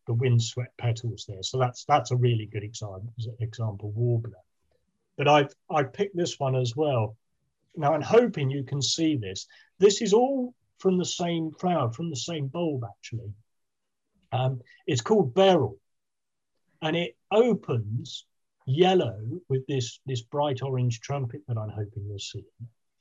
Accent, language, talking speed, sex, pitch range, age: British, English, 155 wpm, male, 120-165 Hz, 40-59